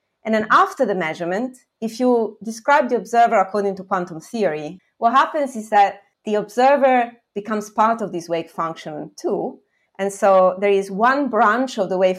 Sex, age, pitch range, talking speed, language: female, 30-49, 175-235 Hz, 175 wpm, English